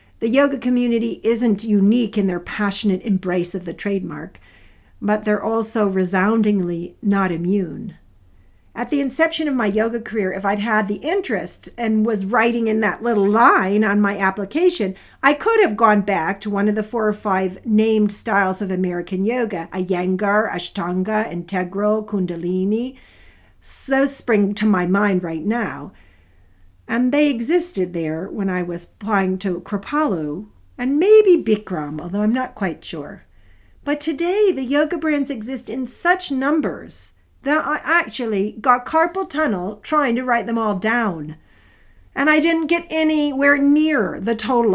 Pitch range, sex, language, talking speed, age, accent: 185-265 Hz, female, English, 155 wpm, 50-69, American